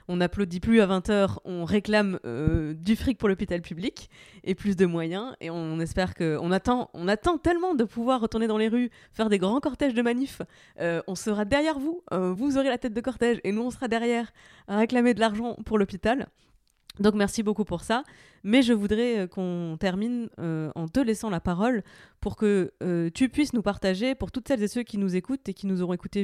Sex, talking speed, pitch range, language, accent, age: female, 220 wpm, 180-230 Hz, French, French, 20-39